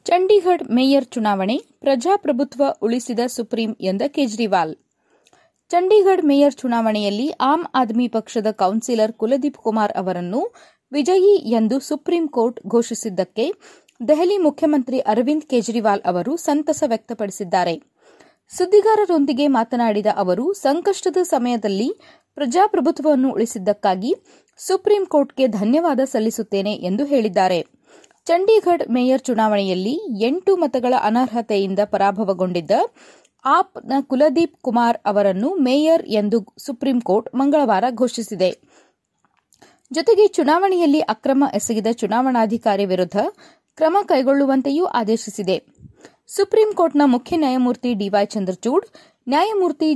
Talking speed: 85 wpm